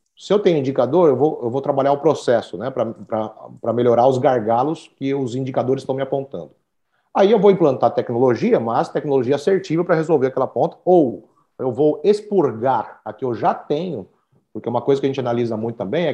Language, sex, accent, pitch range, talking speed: Portuguese, male, Brazilian, 120-155 Hz, 195 wpm